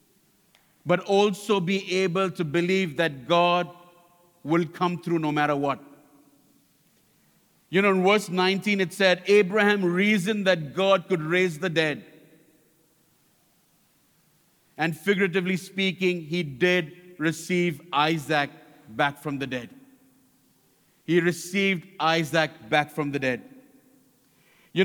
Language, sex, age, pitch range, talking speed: English, male, 50-69, 165-205 Hz, 115 wpm